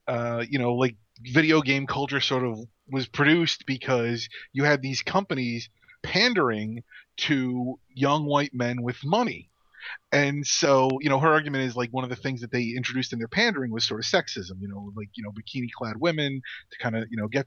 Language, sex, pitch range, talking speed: English, male, 120-155 Hz, 205 wpm